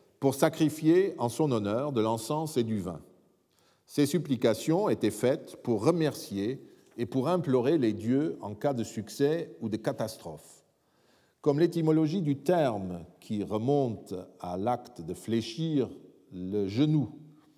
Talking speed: 135 wpm